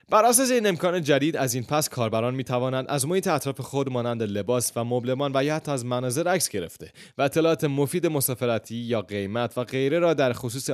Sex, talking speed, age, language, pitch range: male, 200 wpm, 30-49, Persian, 110-140 Hz